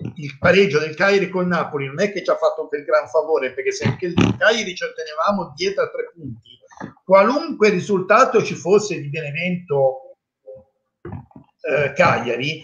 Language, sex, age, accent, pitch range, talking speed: Italian, male, 50-69, native, 140-210 Hz, 165 wpm